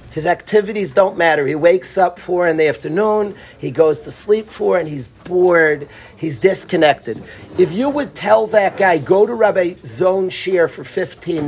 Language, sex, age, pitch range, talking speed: English, male, 40-59, 175-225 Hz, 180 wpm